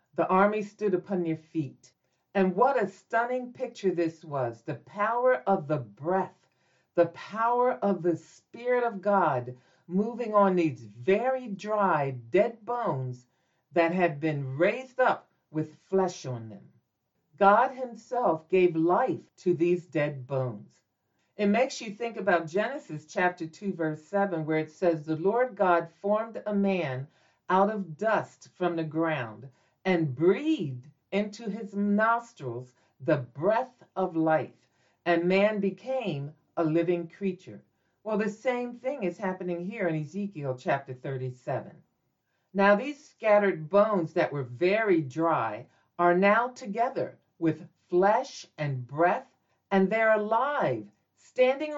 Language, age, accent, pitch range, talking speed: English, 50-69, American, 155-205 Hz, 140 wpm